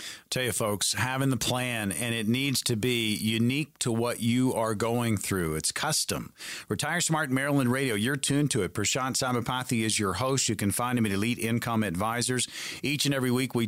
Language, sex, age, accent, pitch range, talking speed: English, male, 40-59, American, 110-130 Hz, 205 wpm